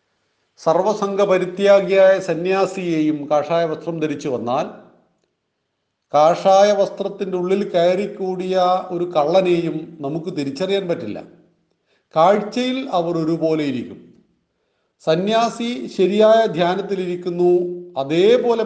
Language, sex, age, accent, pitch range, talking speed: Malayalam, male, 40-59, native, 150-195 Hz, 75 wpm